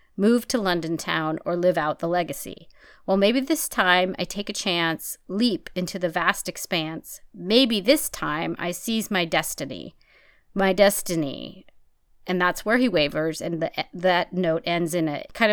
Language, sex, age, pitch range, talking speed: English, female, 40-59, 175-250 Hz, 165 wpm